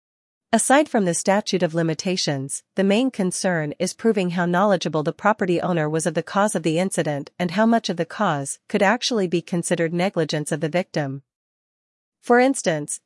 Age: 40-59